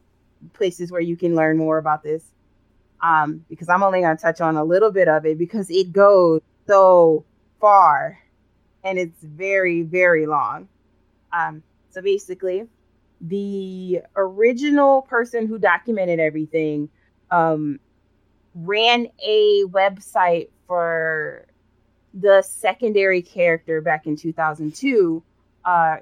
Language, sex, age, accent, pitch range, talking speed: English, female, 20-39, American, 155-205 Hz, 120 wpm